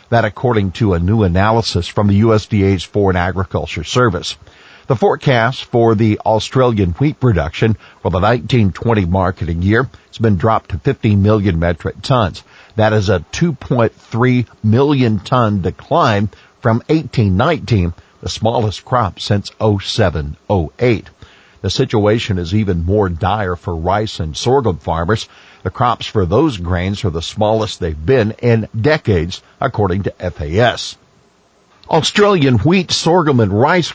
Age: 50-69